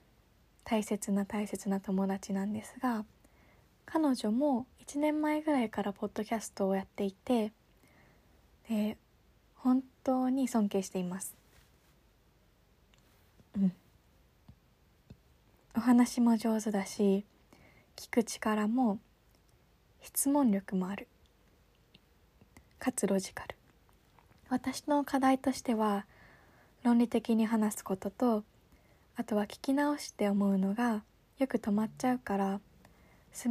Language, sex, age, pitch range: Japanese, female, 20-39, 200-245 Hz